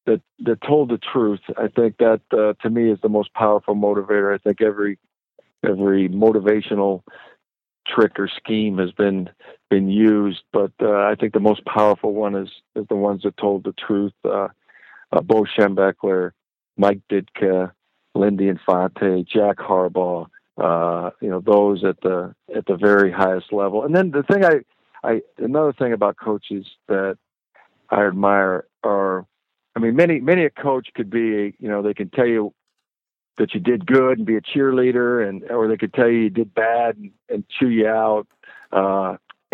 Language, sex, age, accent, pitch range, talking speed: English, male, 50-69, American, 100-115 Hz, 175 wpm